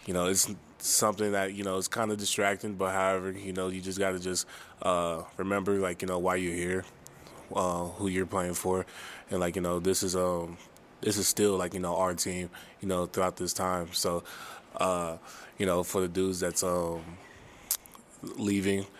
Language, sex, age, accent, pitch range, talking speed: English, male, 20-39, American, 90-100 Hz, 200 wpm